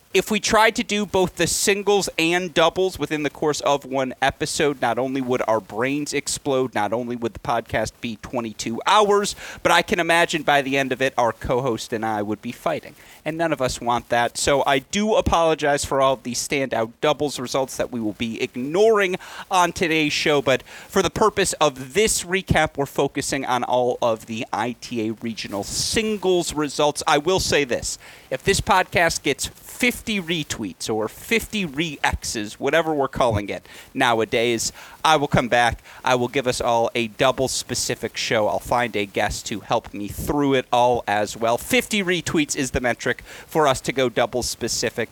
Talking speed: 185 wpm